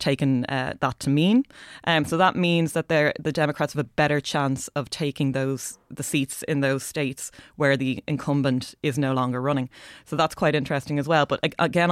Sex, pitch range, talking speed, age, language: female, 135-150 Hz, 205 wpm, 20-39, English